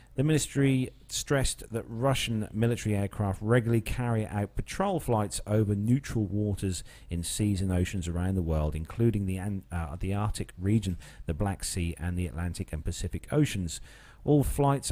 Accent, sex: British, male